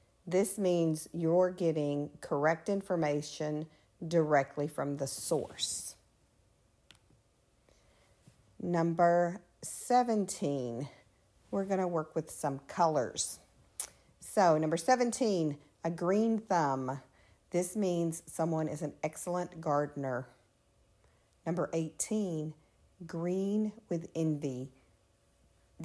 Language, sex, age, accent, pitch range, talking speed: English, female, 50-69, American, 145-180 Hz, 85 wpm